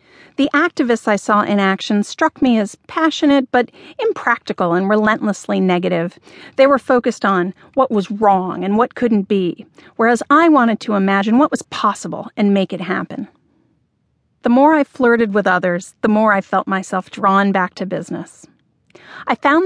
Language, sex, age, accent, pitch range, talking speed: English, female, 40-59, American, 190-255 Hz, 170 wpm